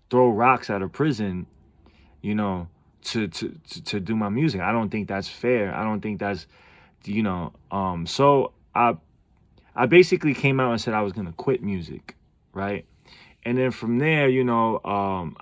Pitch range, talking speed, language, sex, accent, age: 95-115 Hz, 185 wpm, English, male, American, 20-39